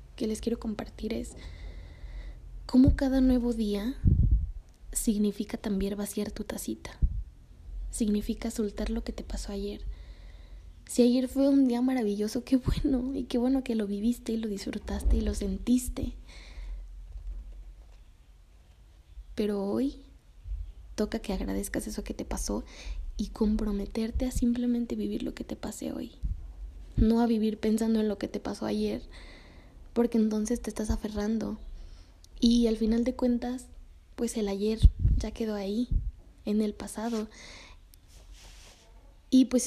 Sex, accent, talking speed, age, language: female, Mexican, 140 wpm, 20-39, Spanish